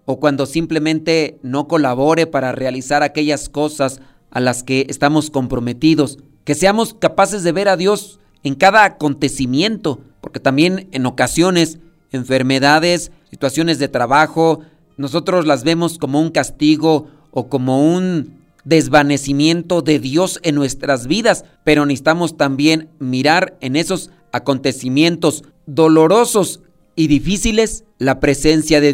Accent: Mexican